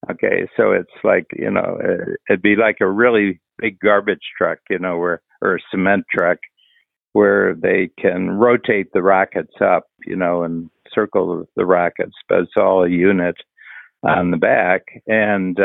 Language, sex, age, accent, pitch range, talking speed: English, male, 60-79, American, 90-110 Hz, 165 wpm